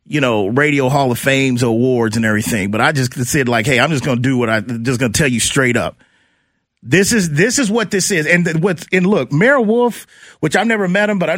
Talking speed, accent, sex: 260 wpm, American, male